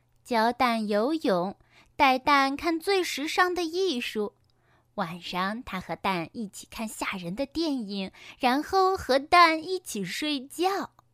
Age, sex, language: 10-29, female, Chinese